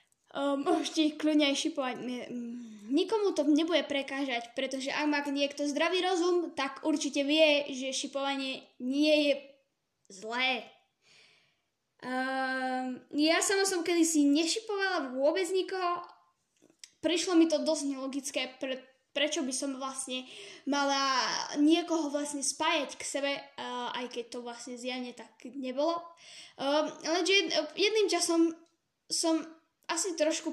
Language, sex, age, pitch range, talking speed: Slovak, female, 10-29, 265-335 Hz, 125 wpm